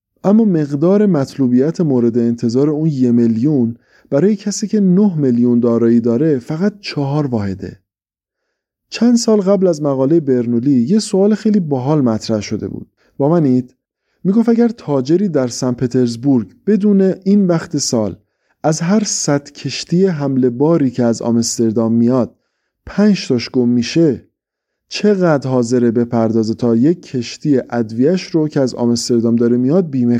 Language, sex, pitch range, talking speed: English, male, 120-180 Hz, 145 wpm